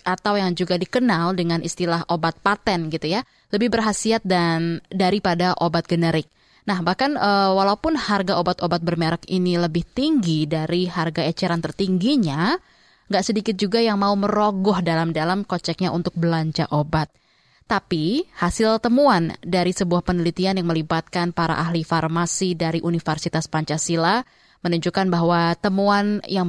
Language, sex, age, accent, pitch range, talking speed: Indonesian, female, 20-39, native, 170-210 Hz, 130 wpm